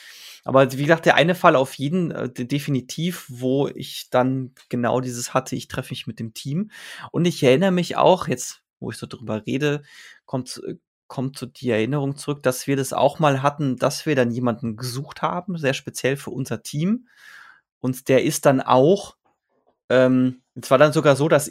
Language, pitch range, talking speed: German, 120-145 Hz, 190 wpm